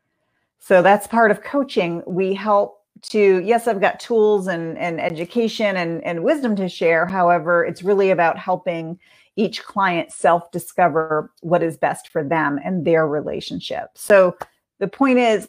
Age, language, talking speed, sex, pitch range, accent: 40-59, English, 155 wpm, female, 165-205 Hz, American